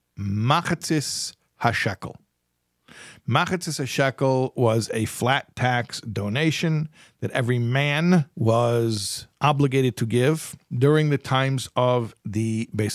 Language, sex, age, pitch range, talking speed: English, male, 50-69, 105-130 Hz, 100 wpm